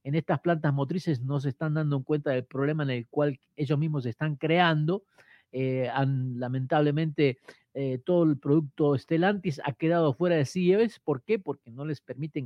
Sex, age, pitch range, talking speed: male, 40-59, 140-180 Hz, 185 wpm